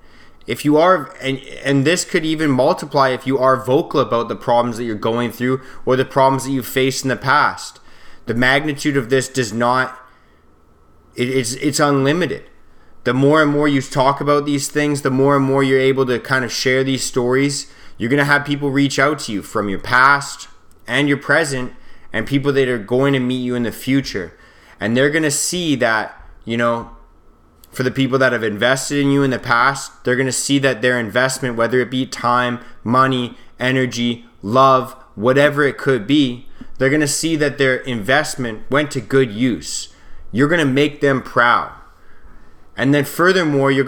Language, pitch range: English, 120-145 Hz